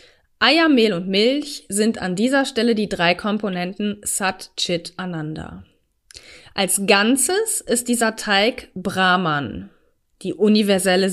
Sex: female